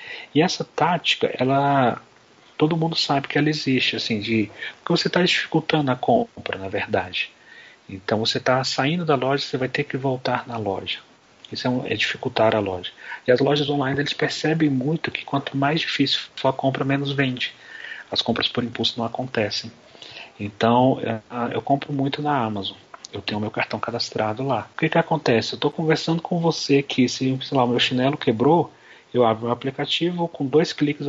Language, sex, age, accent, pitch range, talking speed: Portuguese, male, 40-59, Brazilian, 125-150 Hz, 190 wpm